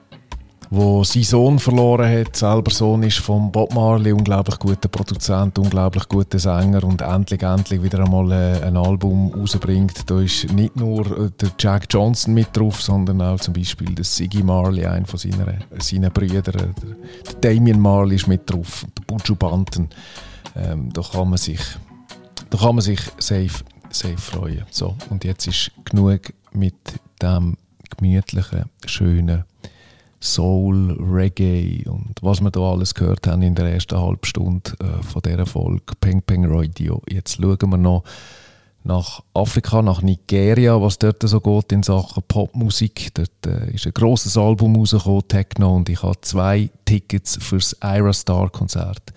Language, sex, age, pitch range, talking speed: German, male, 40-59, 90-105 Hz, 155 wpm